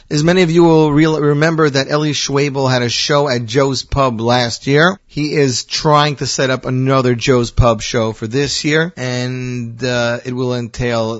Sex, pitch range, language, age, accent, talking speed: male, 125-175 Hz, English, 40-59, American, 195 wpm